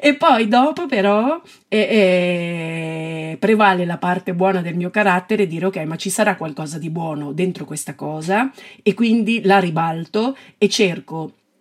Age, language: 30-49, Italian